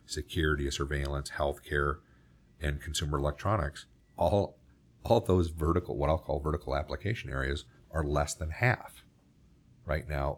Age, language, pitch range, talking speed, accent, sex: 50-69, English, 70-80 Hz, 120 wpm, American, male